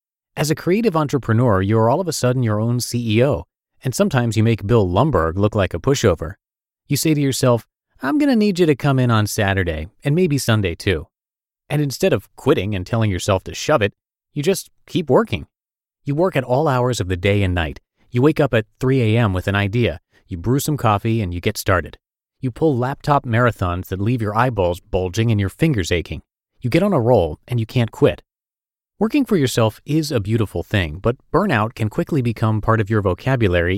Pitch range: 100-140 Hz